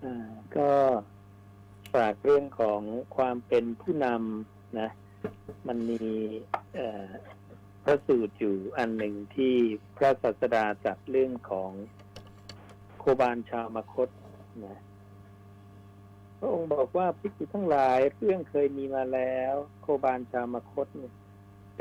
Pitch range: 100-135 Hz